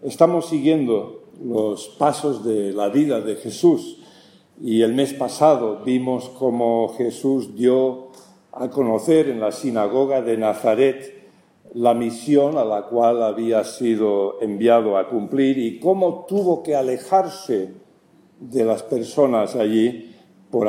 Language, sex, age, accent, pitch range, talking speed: English, male, 50-69, Spanish, 120-160 Hz, 130 wpm